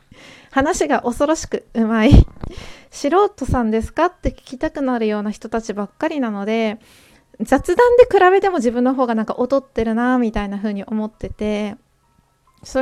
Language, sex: Japanese, female